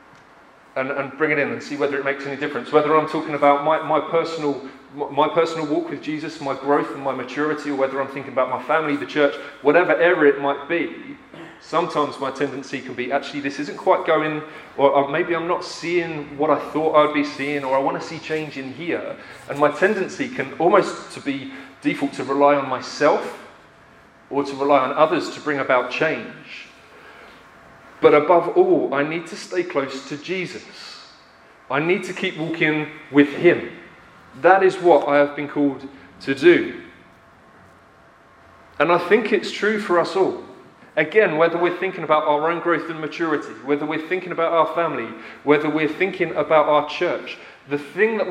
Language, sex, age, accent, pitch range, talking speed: English, male, 30-49, British, 140-170 Hz, 190 wpm